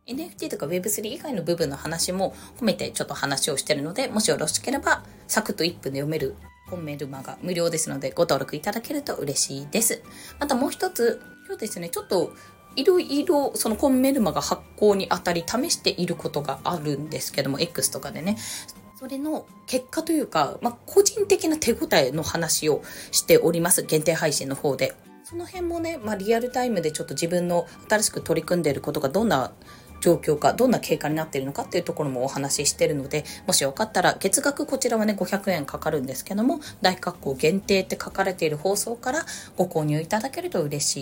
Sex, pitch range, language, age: female, 155-245 Hz, Japanese, 20-39